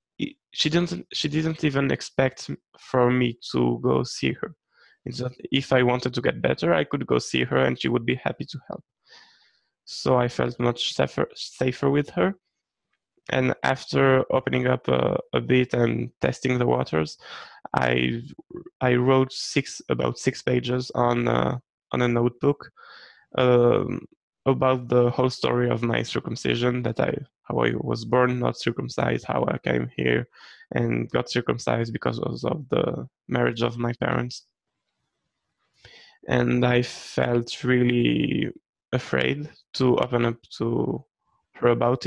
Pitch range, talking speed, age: 115-130 Hz, 145 wpm, 20-39